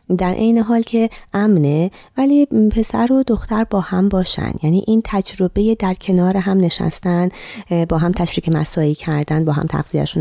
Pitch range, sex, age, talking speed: 155-220 Hz, female, 30-49, 160 wpm